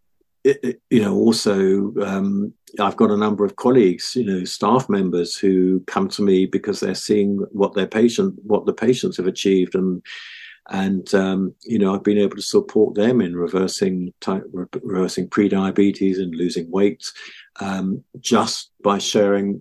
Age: 50-69